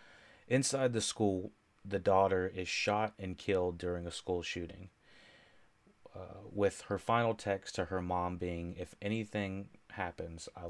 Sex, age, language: male, 30-49, English